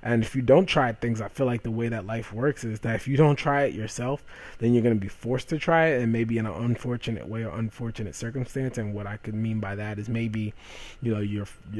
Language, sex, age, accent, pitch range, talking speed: English, male, 20-39, American, 105-125 Hz, 265 wpm